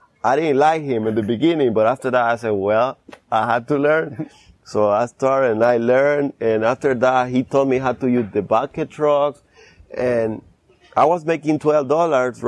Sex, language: male, English